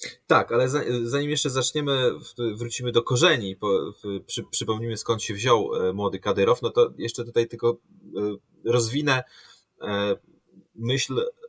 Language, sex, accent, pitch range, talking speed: Polish, male, native, 115-160 Hz, 110 wpm